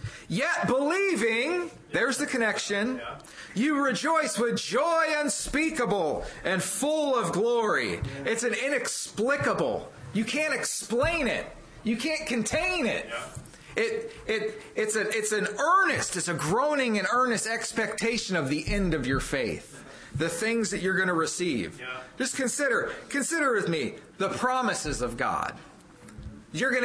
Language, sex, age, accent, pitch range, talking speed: English, male, 40-59, American, 195-290 Hz, 140 wpm